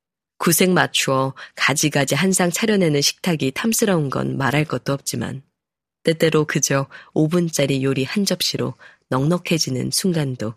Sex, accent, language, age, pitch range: female, native, Korean, 20-39, 135-175 Hz